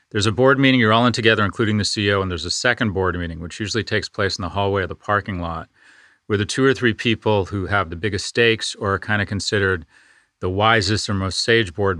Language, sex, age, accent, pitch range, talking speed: English, male, 40-59, American, 95-115 Hz, 250 wpm